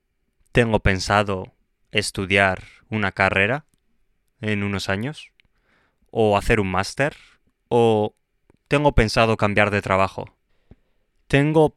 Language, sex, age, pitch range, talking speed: Spanish, male, 20-39, 95-115 Hz, 95 wpm